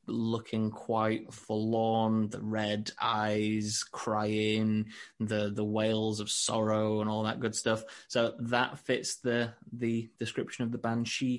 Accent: British